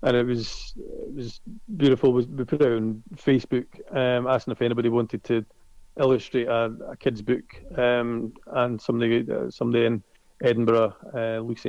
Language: English